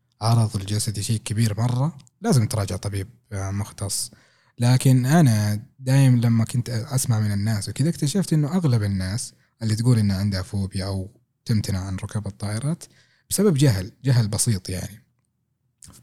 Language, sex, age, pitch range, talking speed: Arabic, male, 20-39, 105-130 Hz, 140 wpm